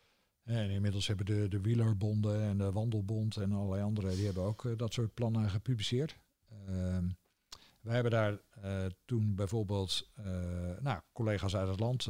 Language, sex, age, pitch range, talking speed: Dutch, male, 50-69, 95-120 Hz, 165 wpm